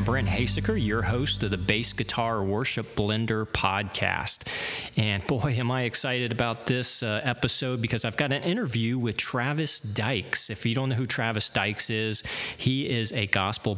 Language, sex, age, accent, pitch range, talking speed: English, male, 40-59, American, 105-120 Hz, 175 wpm